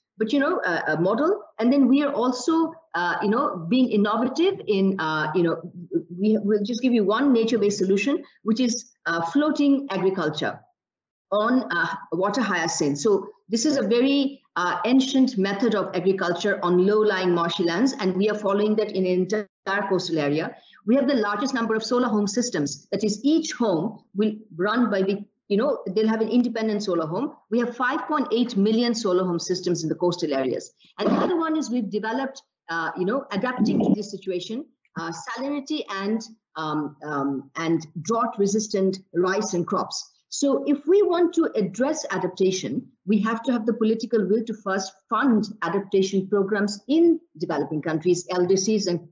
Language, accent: English, Indian